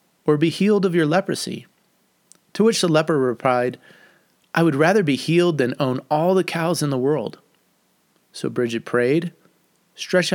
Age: 30-49